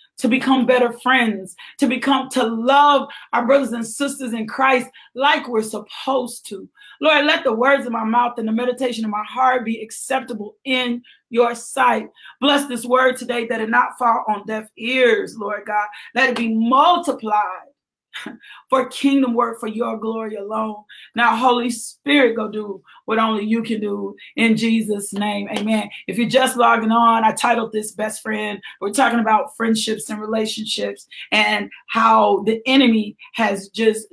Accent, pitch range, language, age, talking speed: American, 220-260 Hz, English, 30-49, 170 wpm